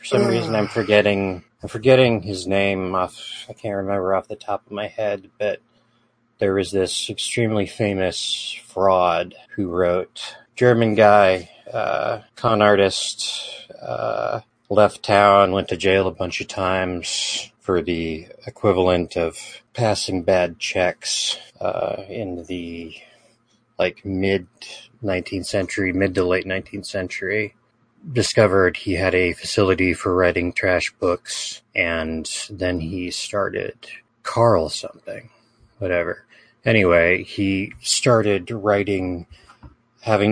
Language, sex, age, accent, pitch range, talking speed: English, male, 30-49, American, 85-105 Hz, 125 wpm